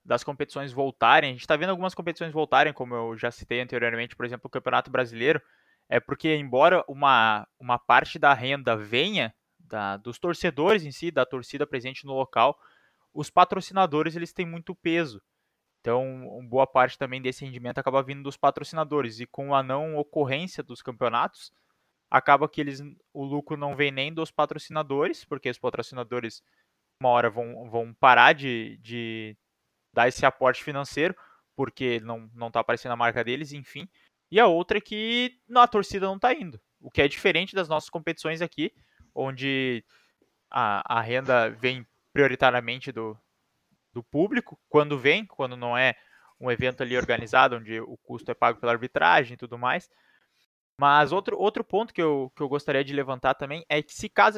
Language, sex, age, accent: Portuguese, male, 20-39, Brazilian